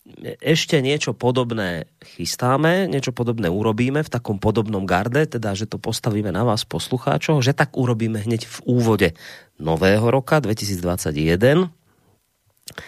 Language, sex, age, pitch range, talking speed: Slovak, male, 30-49, 95-125 Hz, 125 wpm